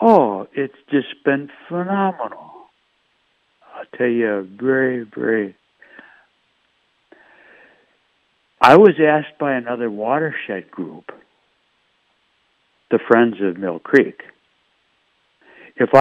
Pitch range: 105-150 Hz